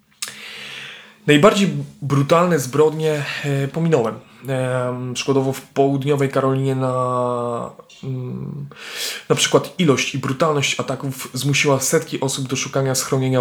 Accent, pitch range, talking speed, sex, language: native, 130-145 Hz, 105 wpm, male, Polish